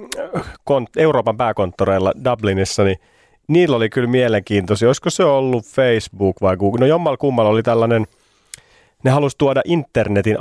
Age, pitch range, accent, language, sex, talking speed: 30-49, 105-135 Hz, native, Finnish, male, 135 wpm